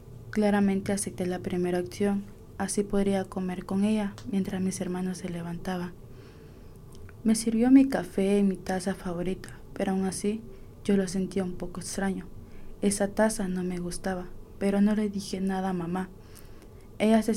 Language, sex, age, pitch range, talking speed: English, female, 20-39, 185-205 Hz, 160 wpm